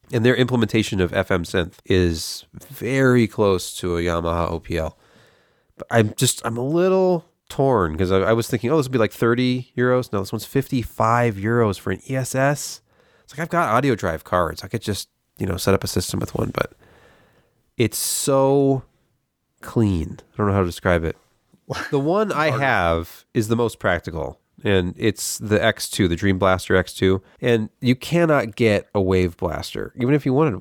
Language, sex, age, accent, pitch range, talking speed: English, male, 30-49, American, 95-125 Hz, 190 wpm